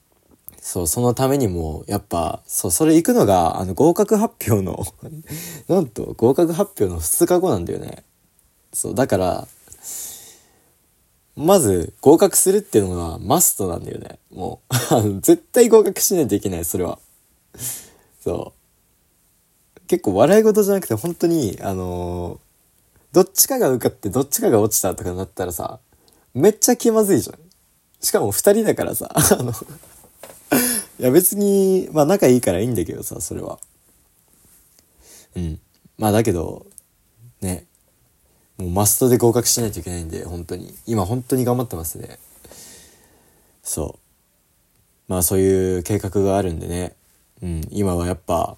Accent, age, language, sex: native, 20-39, Japanese, male